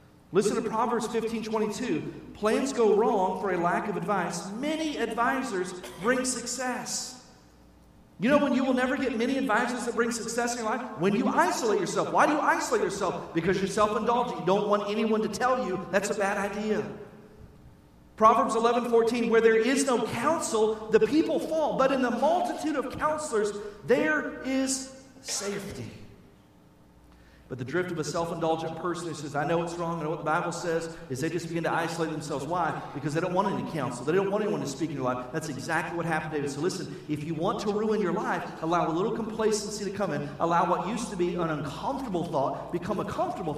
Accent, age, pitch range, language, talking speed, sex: American, 40-59, 145-225 Hz, English, 215 wpm, male